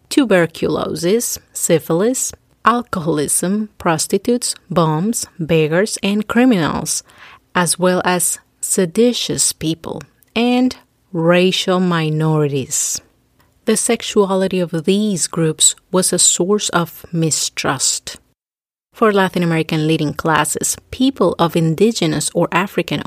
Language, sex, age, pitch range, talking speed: English, female, 30-49, 170-215 Hz, 95 wpm